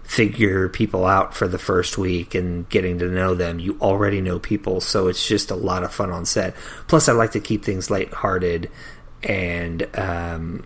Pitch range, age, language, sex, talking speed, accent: 90-105 Hz, 30-49, English, male, 190 wpm, American